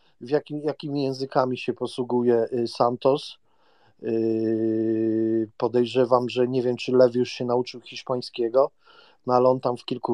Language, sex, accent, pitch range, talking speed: Polish, male, native, 125-165 Hz, 140 wpm